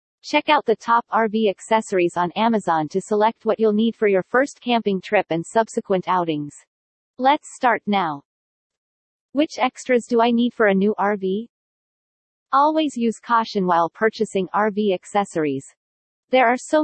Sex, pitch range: female, 190-245 Hz